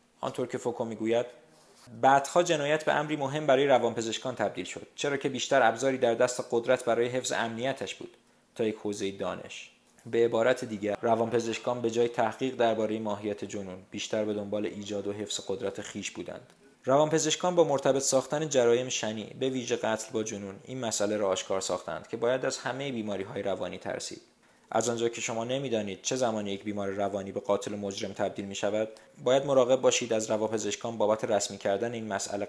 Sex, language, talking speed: male, Persian, 175 wpm